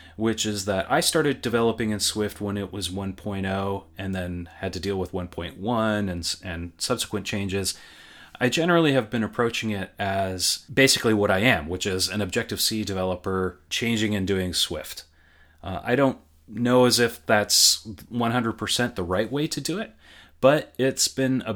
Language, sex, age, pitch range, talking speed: English, male, 30-49, 95-115 Hz, 170 wpm